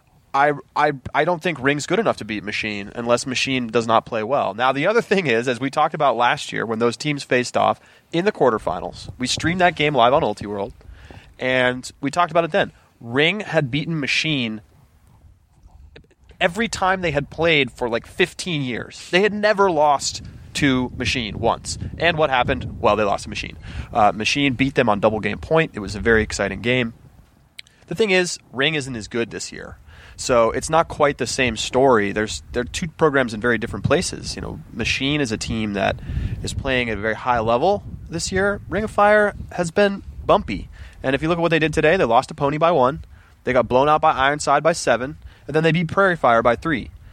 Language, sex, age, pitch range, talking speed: English, male, 30-49, 115-165 Hz, 215 wpm